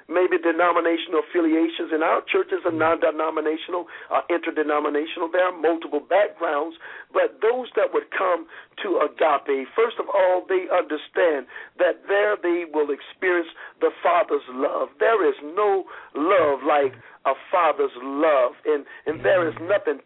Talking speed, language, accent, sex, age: 140 wpm, English, American, male, 50-69